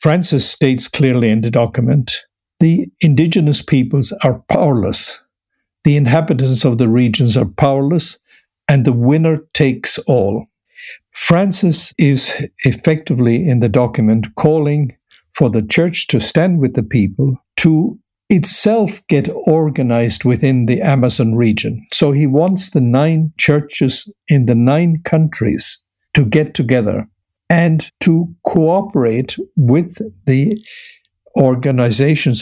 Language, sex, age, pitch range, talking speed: English, male, 60-79, 125-165 Hz, 120 wpm